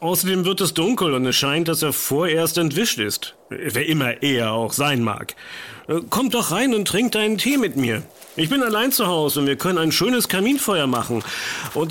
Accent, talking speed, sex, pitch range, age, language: German, 200 wpm, male, 115-175 Hz, 50-69, German